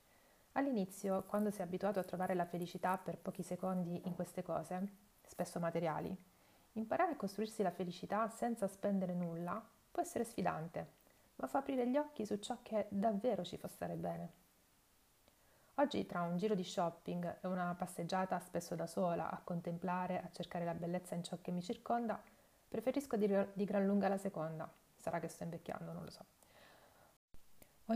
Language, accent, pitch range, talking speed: Italian, native, 170-200 Hz, 165 wpm